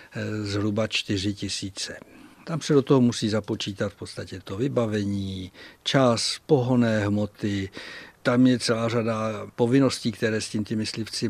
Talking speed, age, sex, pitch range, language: 135 wpm, 60-79, male, 105-130 Hz, Czech